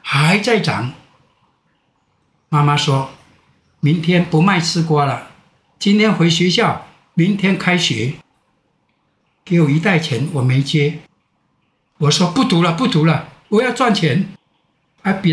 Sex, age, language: male, 60-79, Chinese